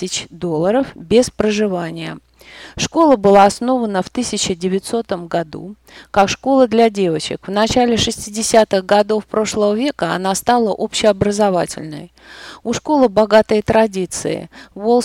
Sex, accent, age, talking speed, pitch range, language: female, native, 30-49, 110 wpm, 180-220 Hz, Russian